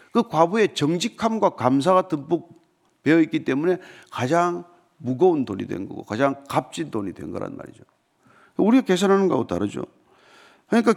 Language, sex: Korean, male